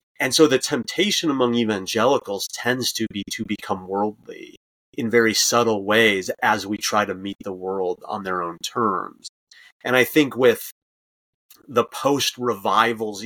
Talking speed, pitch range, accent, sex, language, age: 155 wpm, 105-125 Hz, American, male, English, 30-49